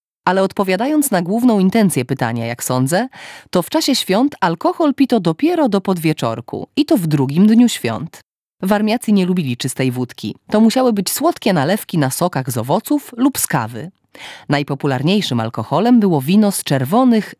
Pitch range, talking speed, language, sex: 140-215 Hz, 155 wpm, Polish, female